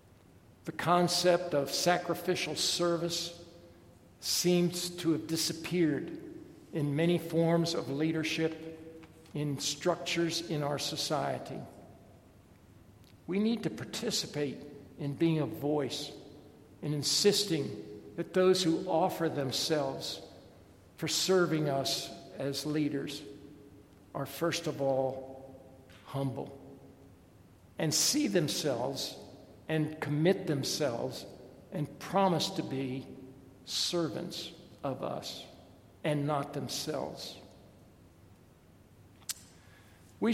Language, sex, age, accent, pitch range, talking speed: English, male, 60-79, American, 120-170 Hz, 90 wpm